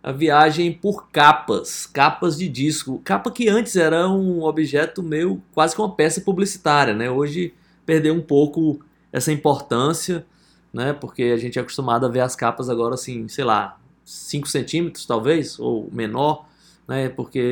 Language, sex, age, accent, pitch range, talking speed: Portuguese, male, 20-39, Brazilian, 125-170 Hz, 160 wpm